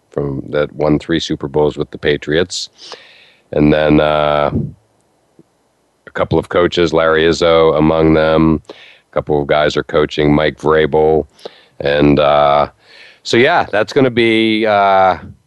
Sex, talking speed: male, 140 wpm